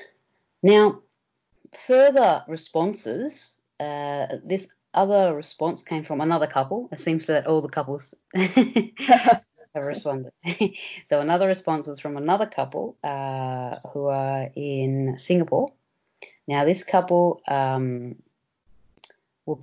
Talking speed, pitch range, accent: 110 wpm, 130-165 Hz, Australian